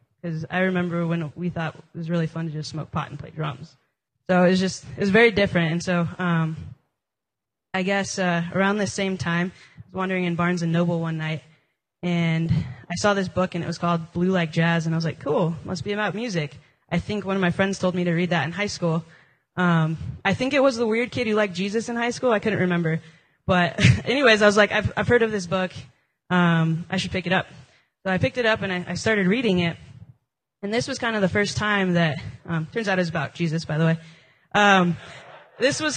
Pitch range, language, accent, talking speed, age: 160-190 Hz, English, American, 240 wpm, 20-39